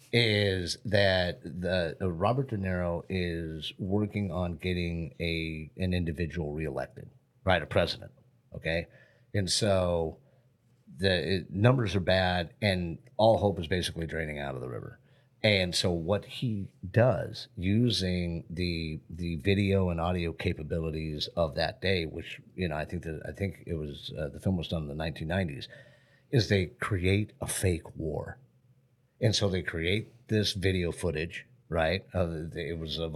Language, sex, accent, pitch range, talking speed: English, male, American, 85-105 Hz, 155 wpm